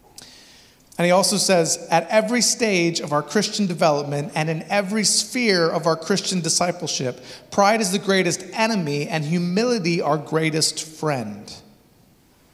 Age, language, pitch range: 30-49, English, 160-205 Hz